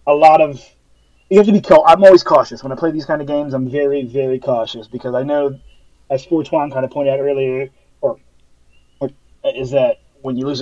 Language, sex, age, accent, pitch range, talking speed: English, male, 30-49, American, 125-155 Hz, 220 wpm